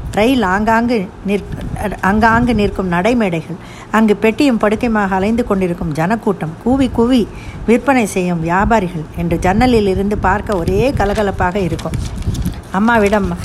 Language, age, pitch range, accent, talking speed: Tamil, 50-69, 190-245 Hz, native, 110 wpm